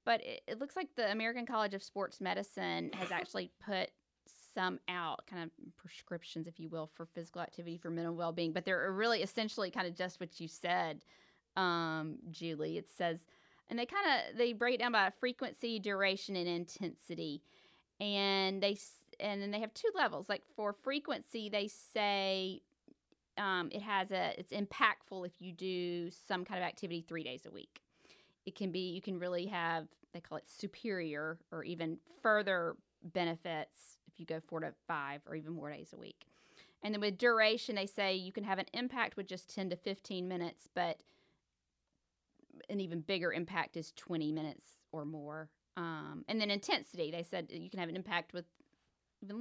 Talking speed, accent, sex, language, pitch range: 185 wpm, American, female, English, 165-205 Hz